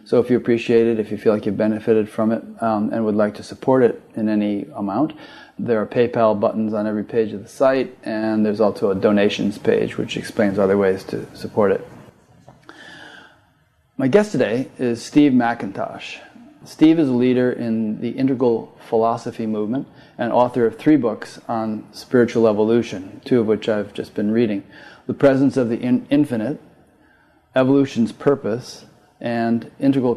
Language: English